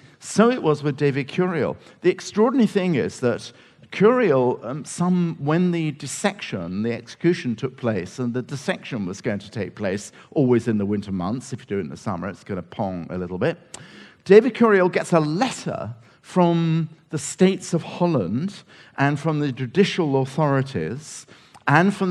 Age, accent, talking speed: 50-69, British, 175 wpm